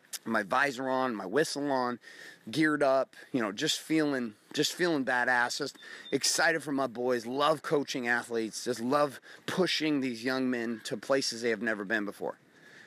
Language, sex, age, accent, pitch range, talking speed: English, male, 30-49, American, 125-155 Hz, 170 wpm